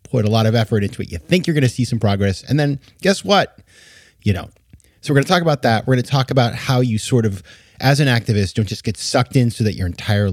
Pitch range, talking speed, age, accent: 95-125 Hz, 285 wpm, 30-49, American